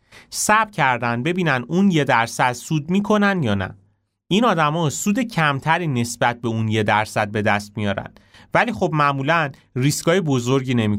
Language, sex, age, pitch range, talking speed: Persian, male, 30-49, 110-150 Hz, 160 wpm